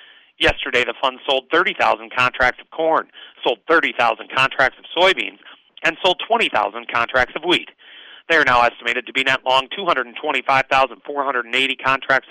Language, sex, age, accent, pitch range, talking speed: English, male, 40-59, American, 125-155 Hz, 140 wpm